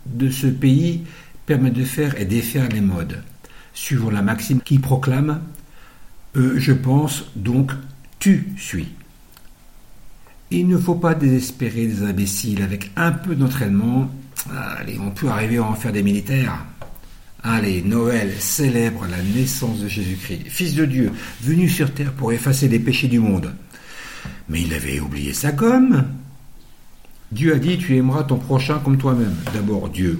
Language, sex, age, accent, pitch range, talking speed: French, male, 60-79, French, 100-140 Hz, 155 wpm